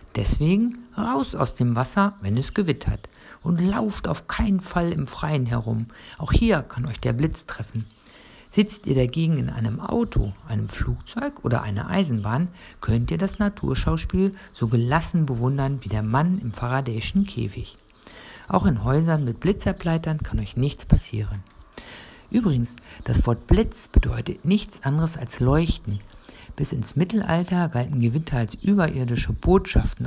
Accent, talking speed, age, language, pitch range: German, 145 wpm, 60-79, German, 115-180 Hz